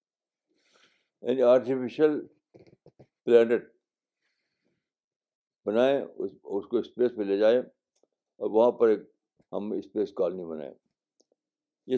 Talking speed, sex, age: 95 wpm, male, 60-79